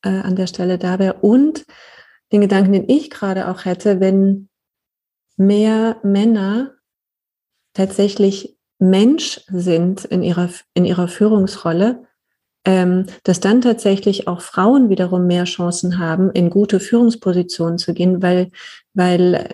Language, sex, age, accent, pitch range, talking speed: German, female, 30-49, German, 175-200 Hz, 120 wpm